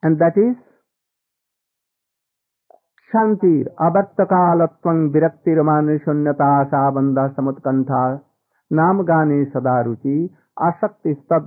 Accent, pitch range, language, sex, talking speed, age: Indian, 135-200 Hz, English, male, 60 wpm, 50-69